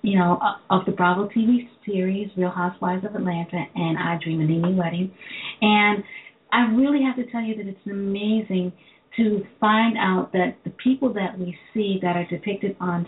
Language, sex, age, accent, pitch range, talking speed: English, female, 40-59, American, 180-215 Hz, 190 wpm